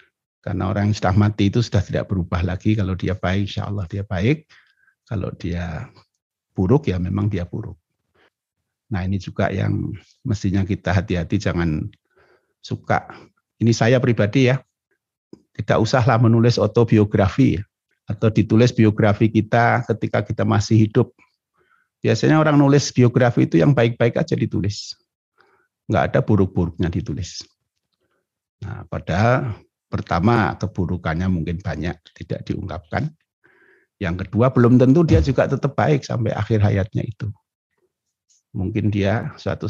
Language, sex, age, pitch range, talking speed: Indonesian, male, 50-69, 95-115 Hz, 130 wpm